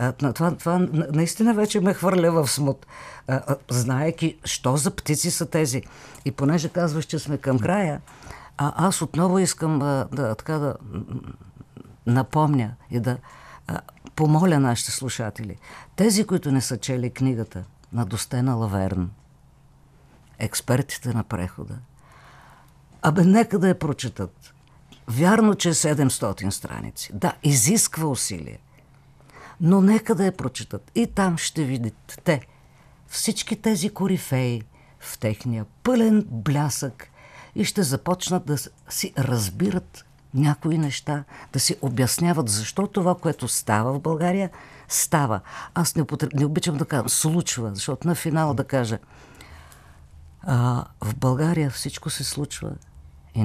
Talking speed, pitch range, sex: 130 wpm, 120-165 Hz, female